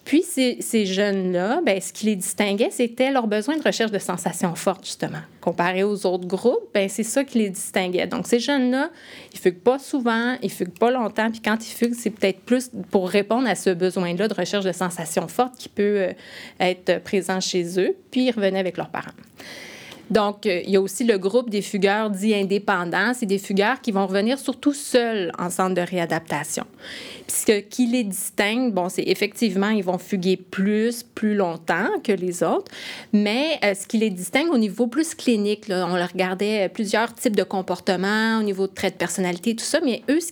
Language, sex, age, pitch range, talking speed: French, female, 30-49, 190-235 Hz, 205 wpm